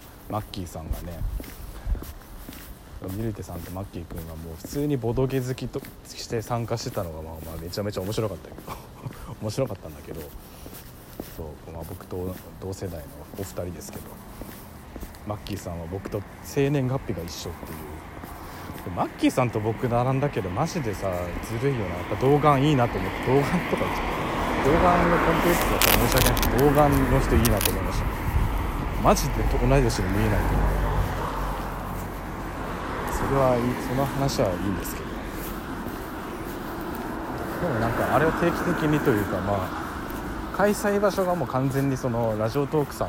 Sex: male